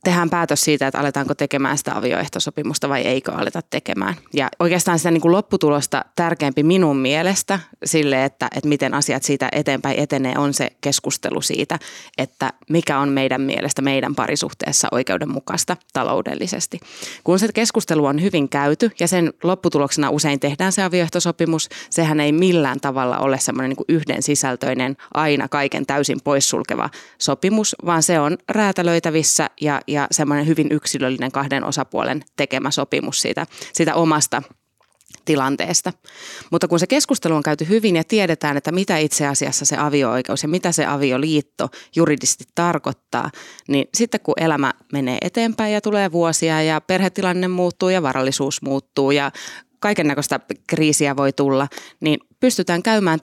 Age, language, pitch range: 20-39, Finnish, 140-175 Hz